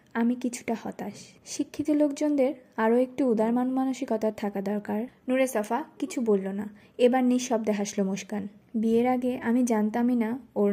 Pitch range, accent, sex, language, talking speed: 210-250 Hz, native, female, Bengali, 145 wpm